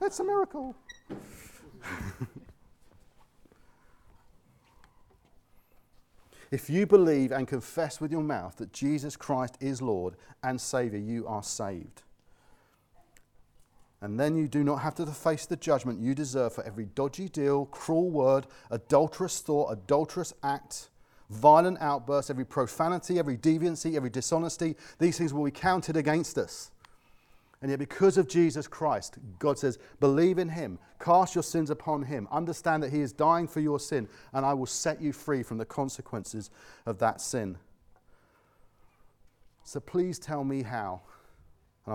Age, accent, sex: 40-59, British, male